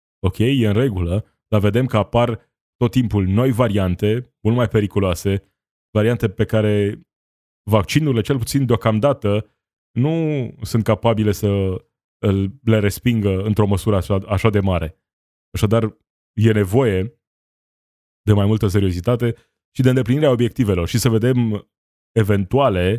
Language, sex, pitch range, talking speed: Romanian, male, 100-125 Hz, 125 wpm